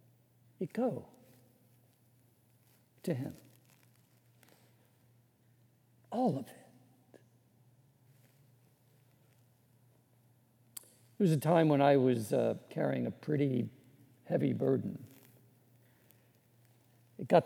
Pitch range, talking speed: 120-155 Hz, 75 wpm